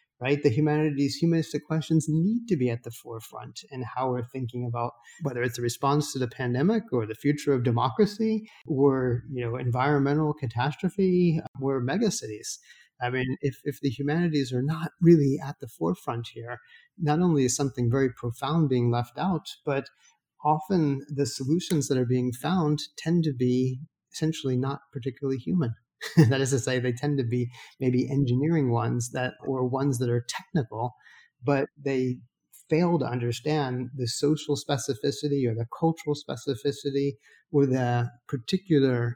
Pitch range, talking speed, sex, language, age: 125-150 Hz, 160 wpm, male, English, 30-49